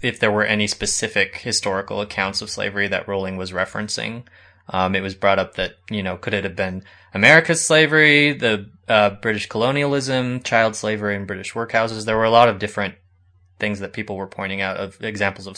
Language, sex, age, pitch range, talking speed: English, male, 20-39, 95-110 Hz, 195 wpm